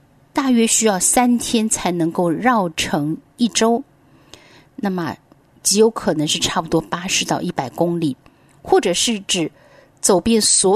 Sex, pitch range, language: female, 170-245 Hz, Chinese